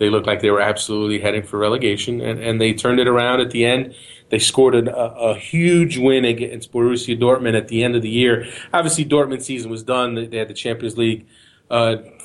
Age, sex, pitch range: 30-49, male, 115-125 Hz